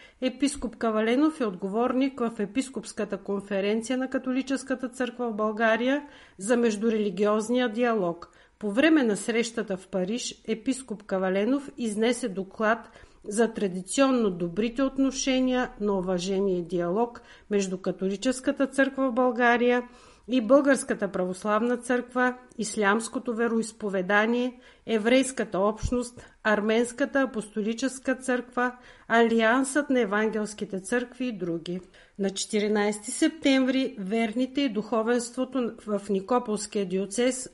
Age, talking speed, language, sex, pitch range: 50-69, 100 wpm, Bulgarian, female, 210-255 Hz